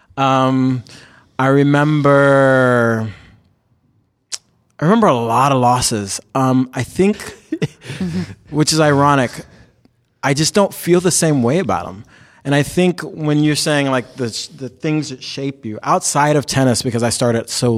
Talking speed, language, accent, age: 150 wpm, English, American, 30-49